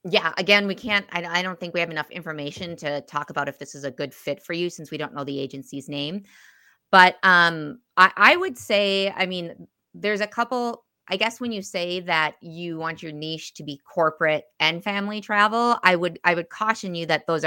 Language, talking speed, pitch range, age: English, 215 wpm, 155-200 Hz, 30-49